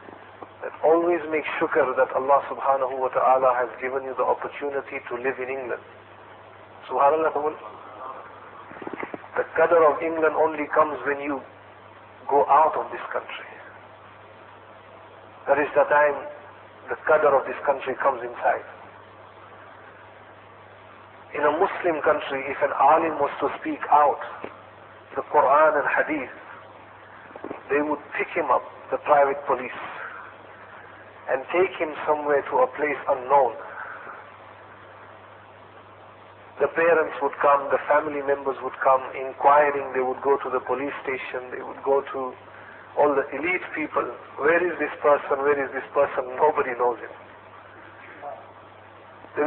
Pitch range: 125-150 Hz